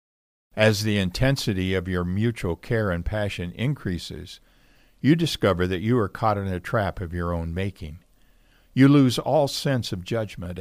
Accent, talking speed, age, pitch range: American, 165 wpm, 60-79, 90-120 Hz